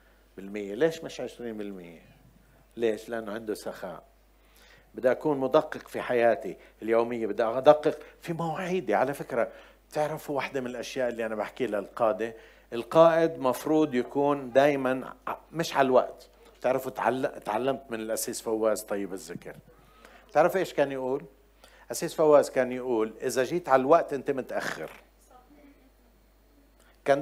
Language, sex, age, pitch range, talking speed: Arabic, male, 50-69, 115-160 Hz, 125 wpm